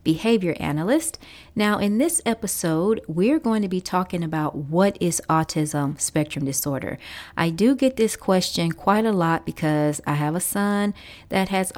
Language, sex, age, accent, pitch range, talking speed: English, female, 30-49, American, 155-190 Hz, 165 wpm